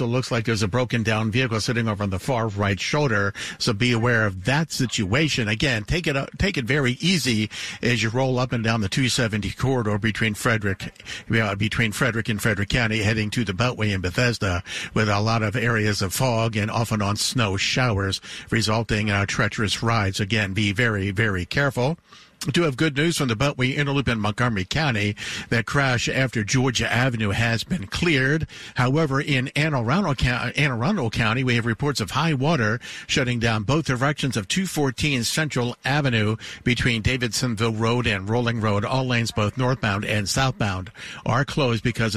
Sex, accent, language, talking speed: male, American, English, 190 wpm